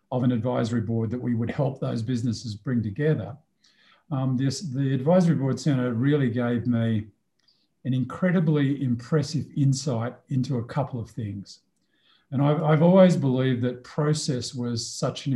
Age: 50-69